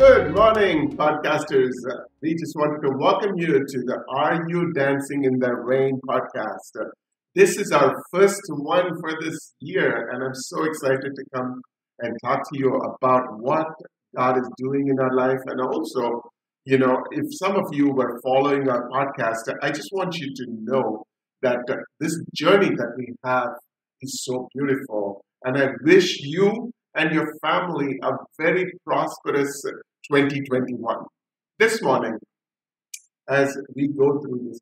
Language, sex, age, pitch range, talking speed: English, male, 50-69, 125-165 Hz, 160 wpm